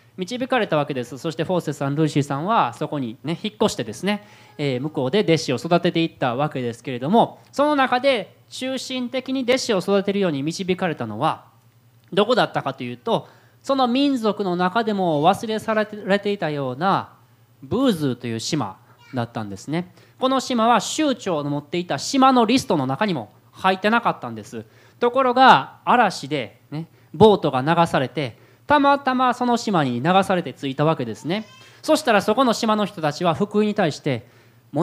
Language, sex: Japanese, male